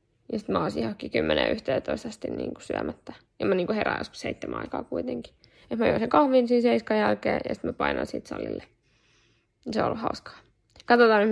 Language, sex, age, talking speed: Finnish, female, 10-29, 195 wpm